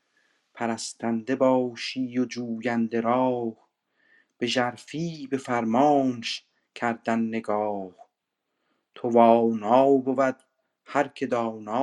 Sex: male